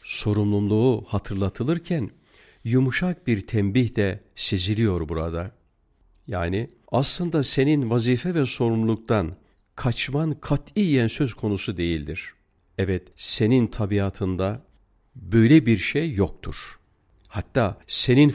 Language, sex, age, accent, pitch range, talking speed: Turkish, male, 50-69, native, 95-120 Hz, 90 wpm